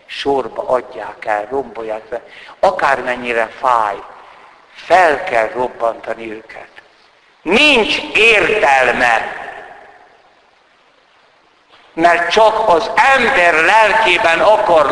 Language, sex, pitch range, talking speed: Hungarian, male, 130-195 Hz, 75 wpm